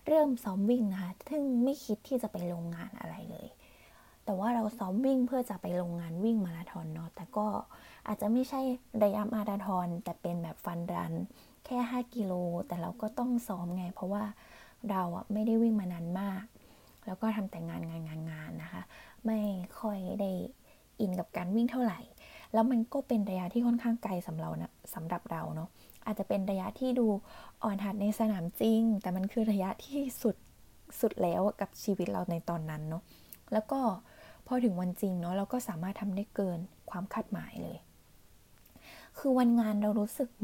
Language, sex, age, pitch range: Thai, female, 20-39, 180-230 Hz